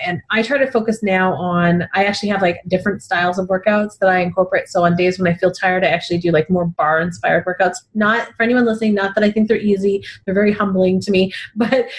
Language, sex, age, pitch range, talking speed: English, female, 30-49, 180-220 Hz, 245 wpm